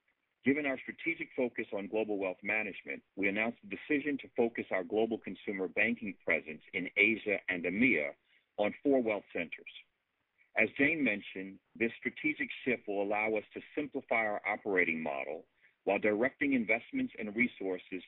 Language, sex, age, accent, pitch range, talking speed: English, male, 50-69, American, 100-130 Hz, 155 wpm